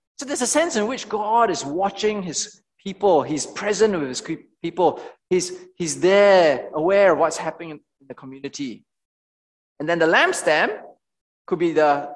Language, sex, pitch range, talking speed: English, male, 155-235 Hz, 165 wpm